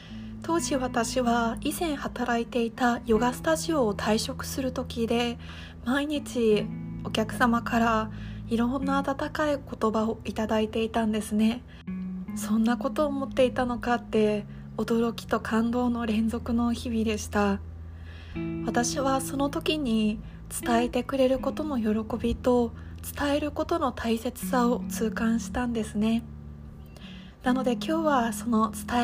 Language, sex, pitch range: Japanese, female, 210-260 Hz